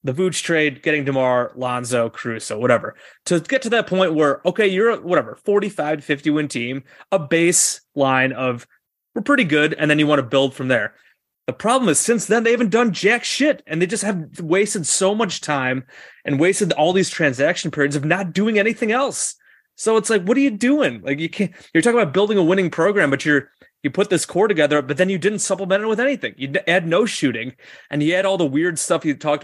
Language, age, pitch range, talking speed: English, 30-49, 130-190 Hz, 225 wpm